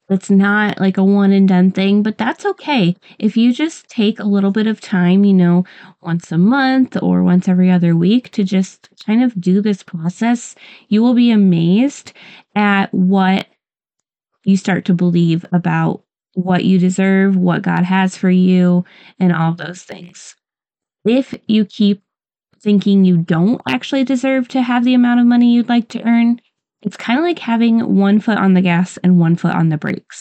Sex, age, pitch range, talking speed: female, 20-39, 180-215 Hz, 185 wpm